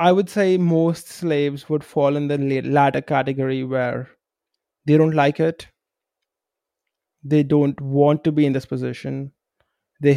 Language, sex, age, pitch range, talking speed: English, male, 20-39, 140-180 Hz, 150 wpm